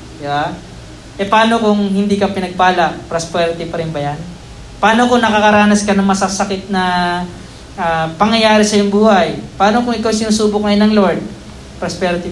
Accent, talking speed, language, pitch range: native, 155 wpm, Filipino, 175-220 Hz